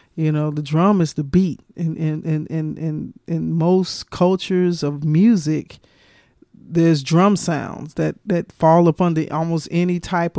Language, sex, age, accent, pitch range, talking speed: English, male, 40-59, American, 150-175 Hz, 170 wpm